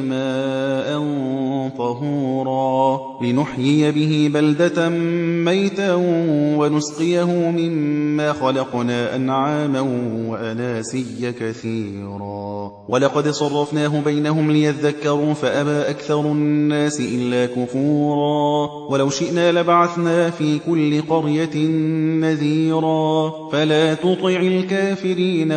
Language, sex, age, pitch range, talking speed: Arabic, male, 30-49, 140-170 Hz, 70 wpm